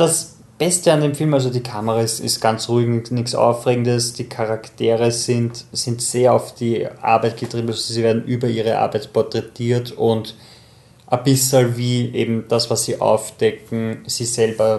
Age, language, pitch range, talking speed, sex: 20-39, German, 110-125 Hz, 165 wpm, male